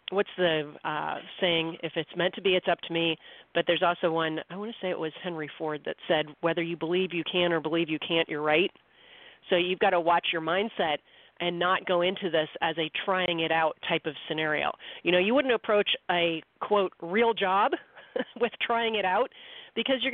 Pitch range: 170-230 Hz